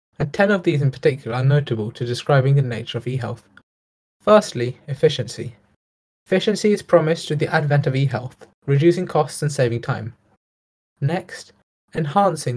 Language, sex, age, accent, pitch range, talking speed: English, male, 10-29, British, 125-160 Hz, 150 wpm